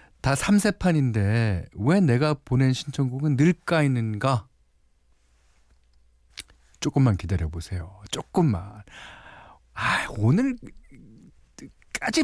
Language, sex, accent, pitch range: Korean, male, native, 95-150 Hz